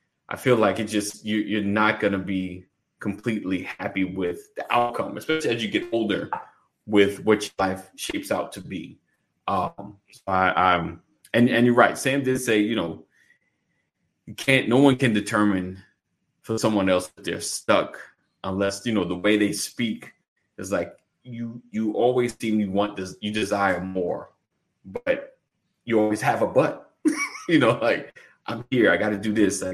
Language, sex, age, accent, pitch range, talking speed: English, male, 20-39, American, 95-115 Hz, 180 wpm